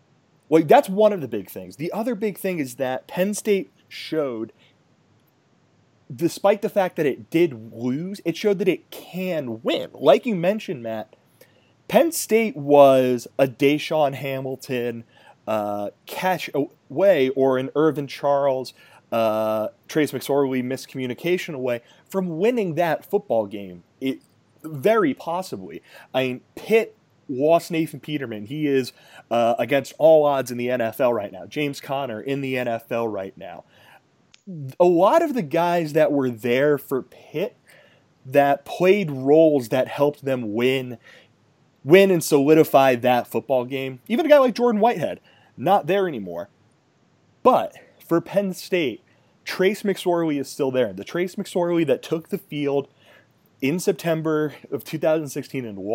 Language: English